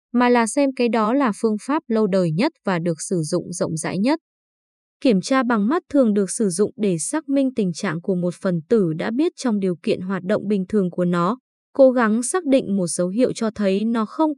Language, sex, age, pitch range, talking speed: Vietnamese, female, 20-39, 185-255 Hz, 240 wpm